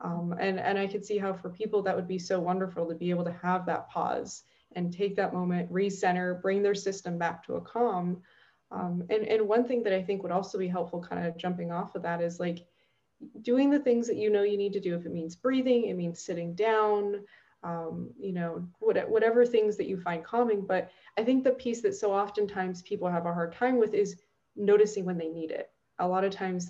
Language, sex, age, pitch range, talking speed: English, female, 20-39, 180-220 Hz, 235 wpm